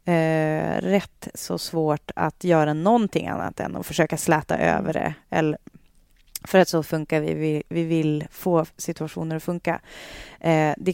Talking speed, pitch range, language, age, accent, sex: 160 wpm, 150-185 Hz, Swedish, 30-49, native, female